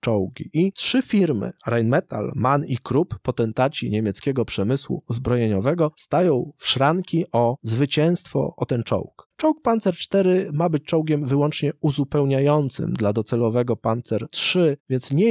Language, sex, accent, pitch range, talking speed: Polish, male, native, 115-150 Hz, 135 wpm